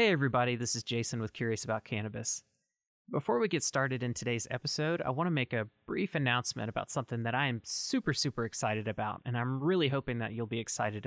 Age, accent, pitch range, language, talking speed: 30-49, American, 115-145 Hz, English, 210 wpm